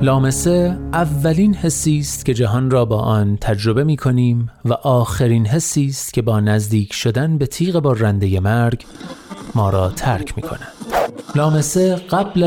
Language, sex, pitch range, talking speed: Persian, male, 115-160 Hz, 145 wpm